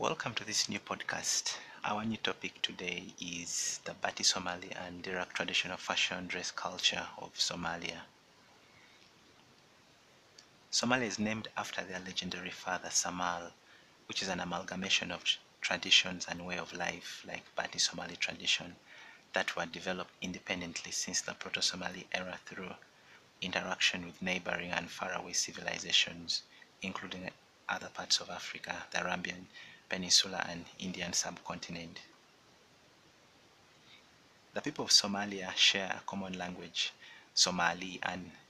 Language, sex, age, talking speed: English, male, 30-49, 125 wpm